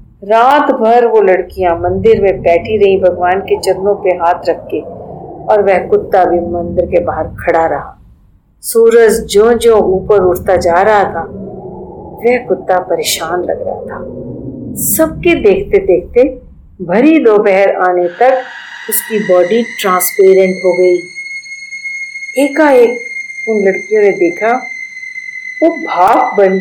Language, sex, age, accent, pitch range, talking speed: Hindi, female, 50-69, native, 190-275 Hz, 135 wpm